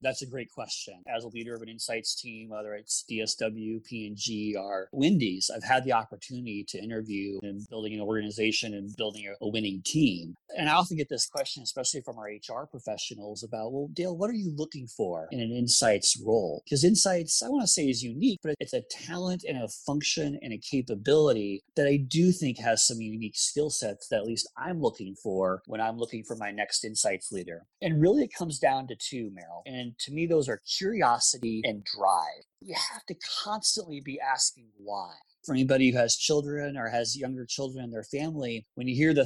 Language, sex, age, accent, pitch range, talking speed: English, male, 30-49, American, 110-150 Hz, 205 wpm